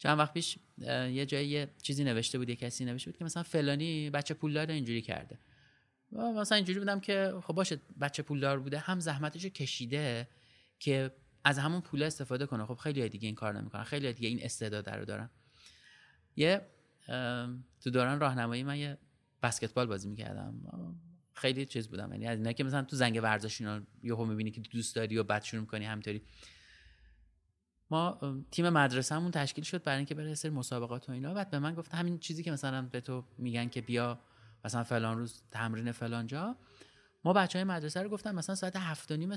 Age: 30-49